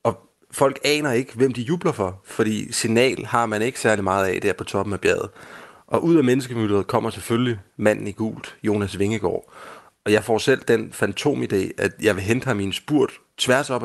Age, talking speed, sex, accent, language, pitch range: 30-49, 195 wpm, male, native, Danish, 100-120 Hz